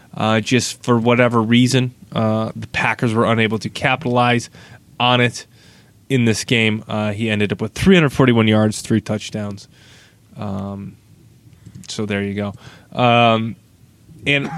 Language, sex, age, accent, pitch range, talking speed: English, male, 20-39, American, 115-135 Hz, 135 wpm